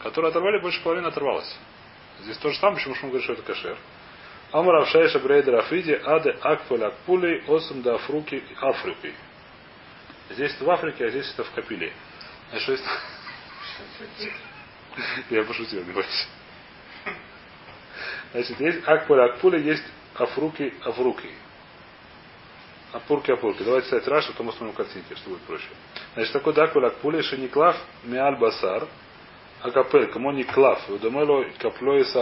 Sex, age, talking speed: male, 30-49, 140 wpm